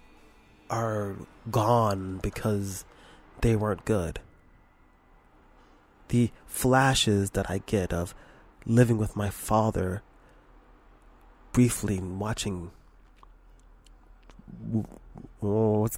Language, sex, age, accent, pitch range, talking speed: English, male, 20-39, American, 95-120 Hz, 70 wpm